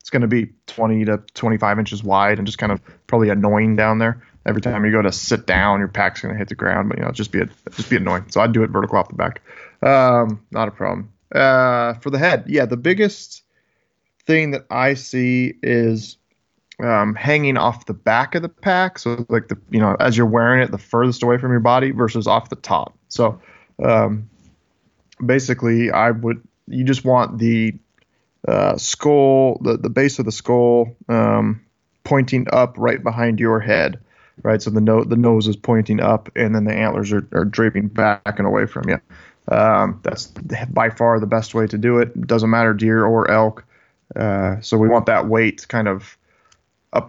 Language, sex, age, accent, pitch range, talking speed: English, male, 20-39, American, 105-120 Hz, 205 wpm